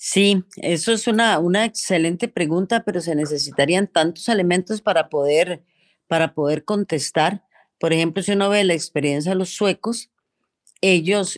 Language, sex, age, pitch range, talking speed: Spanish, female, 40-59, 160-200 Hz, 150 wpm